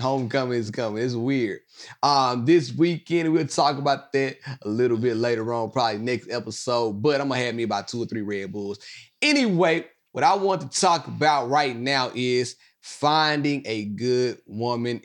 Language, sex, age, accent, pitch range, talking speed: English, male, 30-49, American, 125-195 Hz, 185 wpm